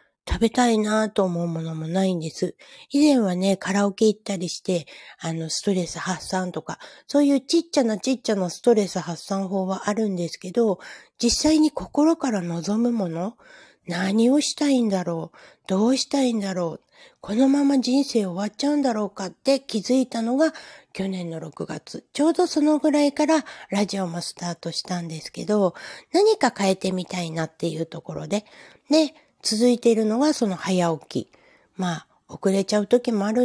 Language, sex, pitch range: Japanese, female, 180-245 Hz